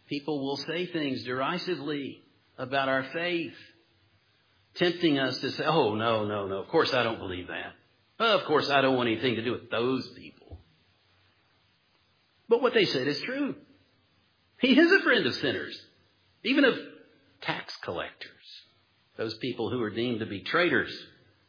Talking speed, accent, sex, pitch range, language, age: 160 wpm, American, male, 115-140 Hz, English, 50-69